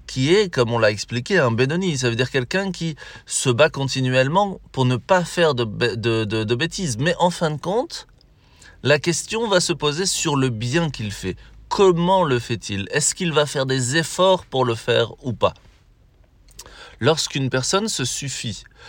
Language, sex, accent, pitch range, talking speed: French, male, French, 120-150 Hz, 185 wpm